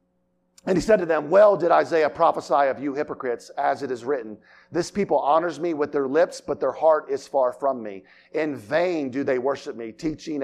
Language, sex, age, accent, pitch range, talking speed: English, male, 50-69, American, 120-185 Hz, 215 wpm